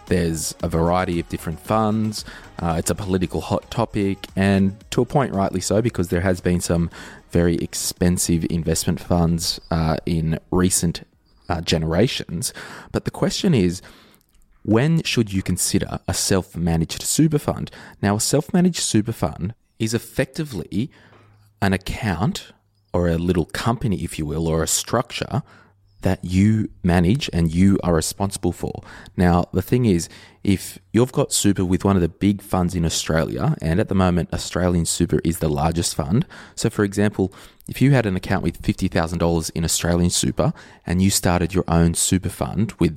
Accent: Australian